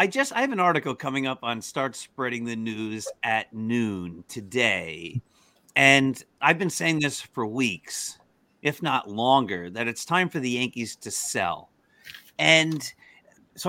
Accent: American